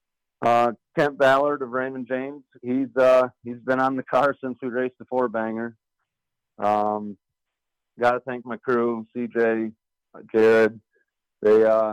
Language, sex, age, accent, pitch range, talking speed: English, male, 40-59, American, 100-120 Hz, 145 wpm